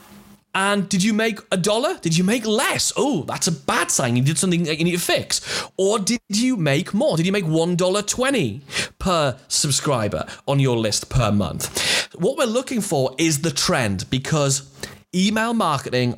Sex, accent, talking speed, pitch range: male, British, 180 wpm, 130-190 Hz